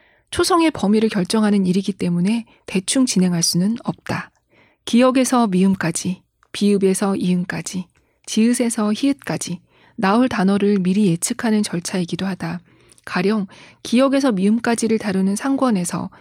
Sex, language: female, Korean